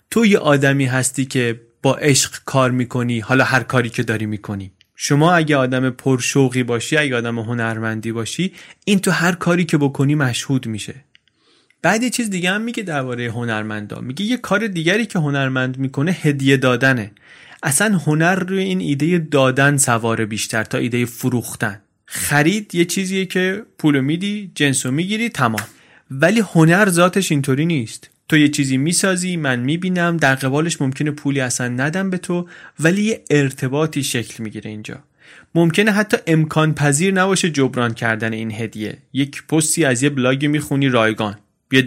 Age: 30-49